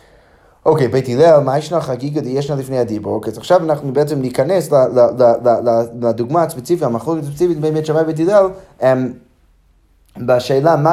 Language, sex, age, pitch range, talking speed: Hebrew, male, 20-39, 120-160 Hz, 145 wpm